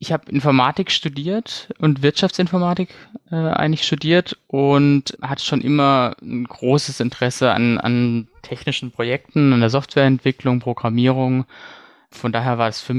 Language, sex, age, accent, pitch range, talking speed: German, male, 20-39, German, 120-145 Hz, 135 wpm